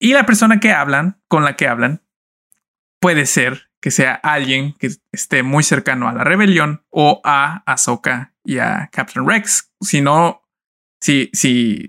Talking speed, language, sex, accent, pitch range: 155 wpm, Spanish, male, Mexican, 140-200 Hz